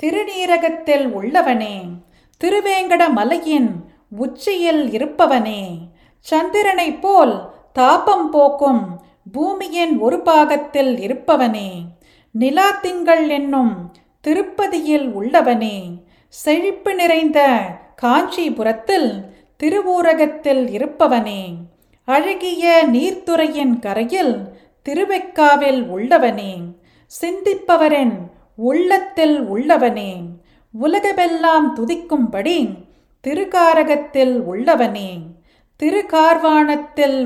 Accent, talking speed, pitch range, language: native, 60 wpm, 225-335 Hz, Tamil